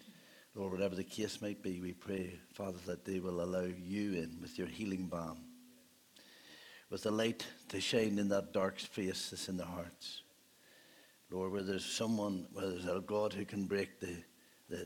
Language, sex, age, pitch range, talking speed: English, male, 60-79, 95-110 Hz, 180 wpm